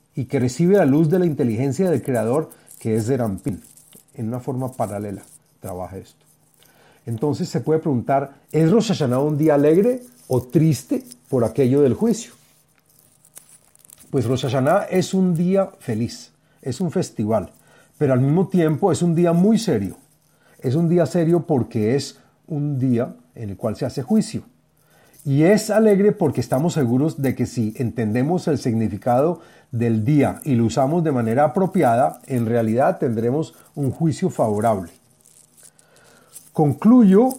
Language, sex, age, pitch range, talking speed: Spanish, male, 40-59, 120-160 Hz, 150 wpm